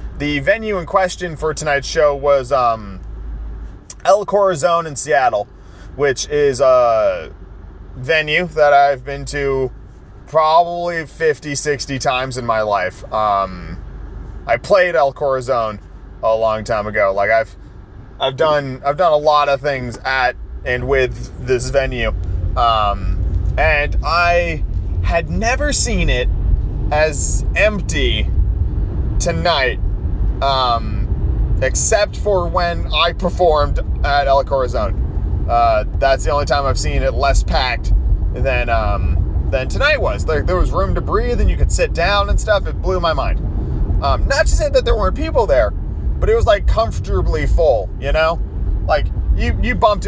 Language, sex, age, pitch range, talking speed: English, male, 30-49, 95-150 Hz, 150 wpm